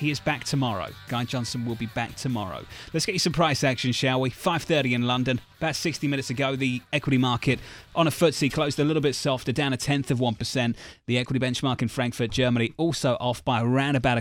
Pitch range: 120-150 Hz